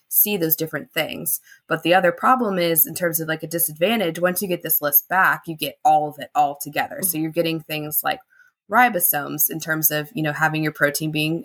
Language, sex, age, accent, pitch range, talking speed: English, female, 20-39, American, 150-175 Hz, 225 wpm